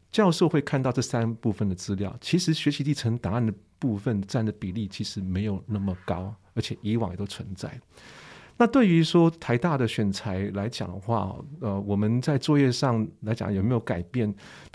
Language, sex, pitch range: Chinese, male, 105-130 Hz